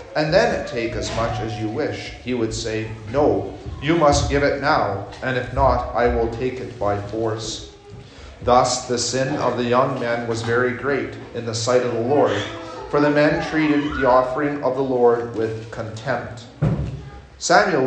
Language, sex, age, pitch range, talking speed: English, male, 40-59, 110-140 Hz, 180 wpm